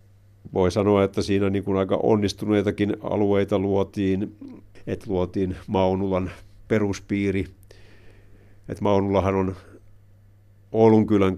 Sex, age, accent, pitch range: male, 50-69, native, 95-105 Hz